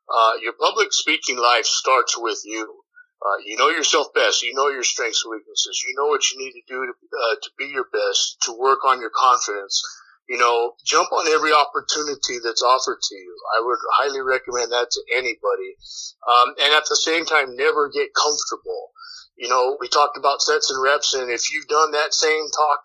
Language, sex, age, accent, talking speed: English, male, 50-69, American, 200 wpm